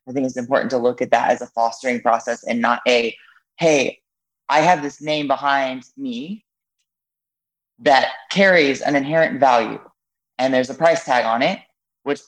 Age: 20-39